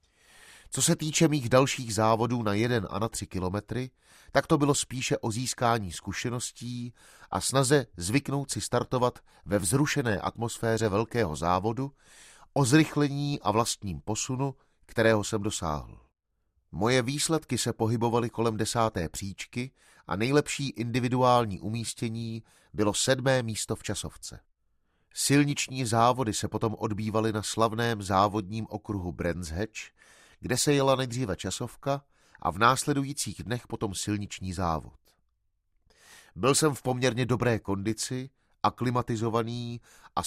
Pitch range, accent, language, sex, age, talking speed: 105-130 Hz, native, Czech, male, 30-49, 125 wpm